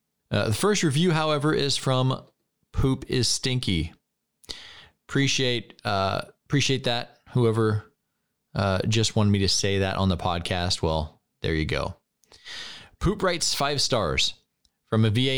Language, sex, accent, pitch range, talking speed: English, male, American, 90-115 Hz, 135 wpm